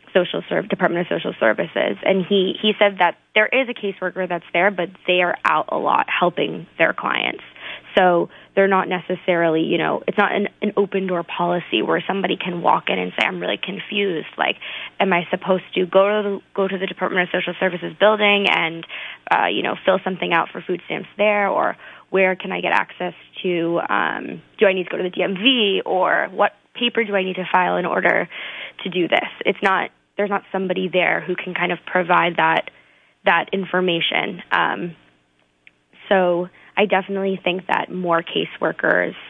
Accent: American